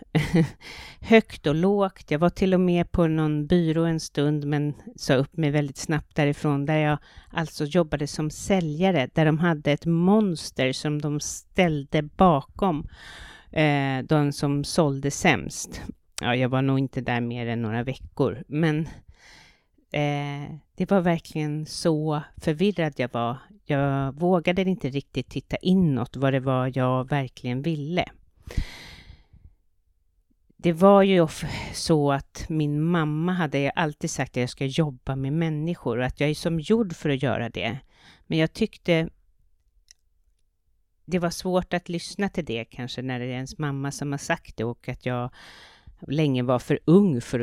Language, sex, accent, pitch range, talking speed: Swedish, female, native, 125-165 Hz, 155 wpm